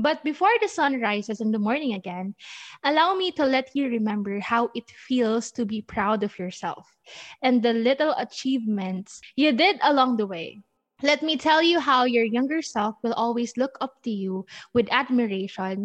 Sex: female